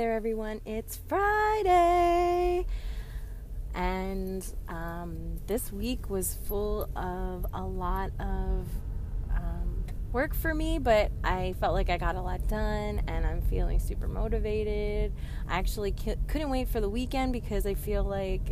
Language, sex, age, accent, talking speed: English, female, 20-39, American, 135 wpm